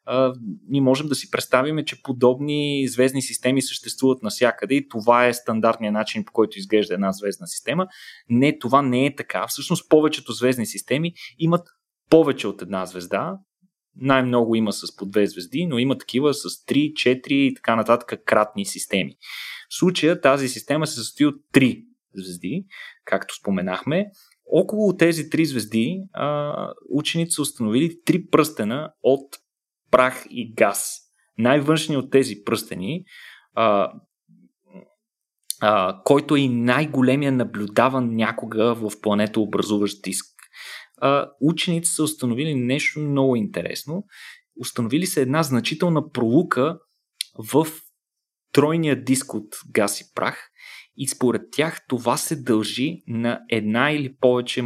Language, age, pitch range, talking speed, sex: Bulgarian, 20-39, 115-150 Hz, 130 wpm, male